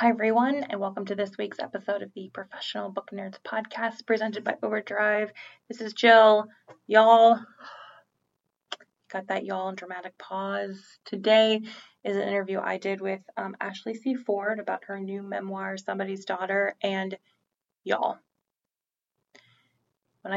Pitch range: 195-220 Hz